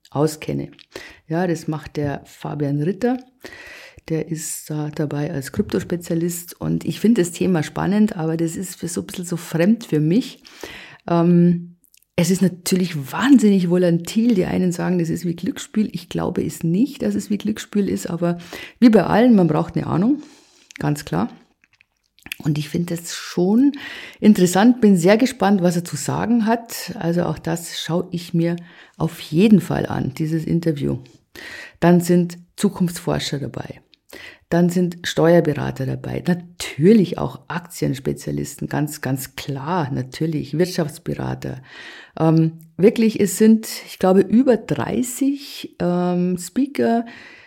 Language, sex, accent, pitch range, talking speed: German, female, German, 160-215 Hz, 145 wpm